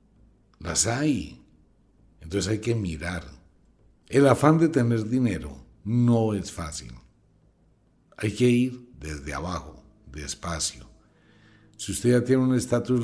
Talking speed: 120 wpm